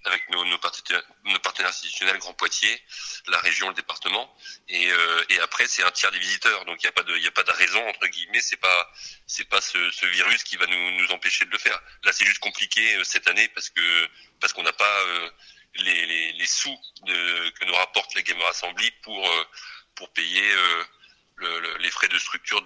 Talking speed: 220 wpm